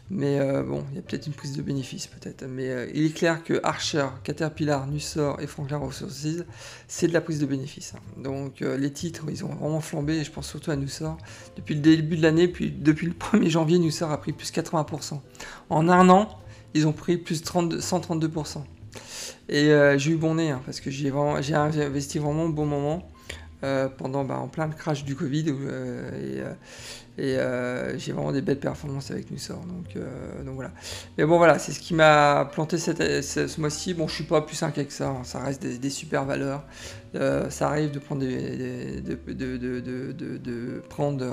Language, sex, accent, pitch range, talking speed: French, male, French, 130-155 Hz, 195 wpm